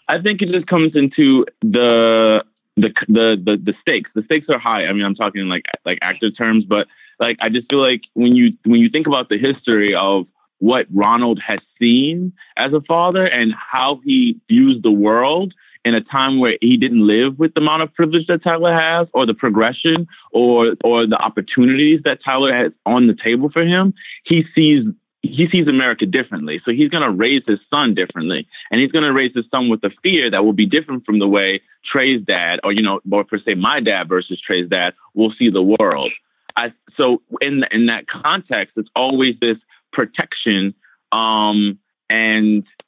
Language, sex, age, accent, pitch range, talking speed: English, male, 30-49, American, 110-155 Hz, 200 wpm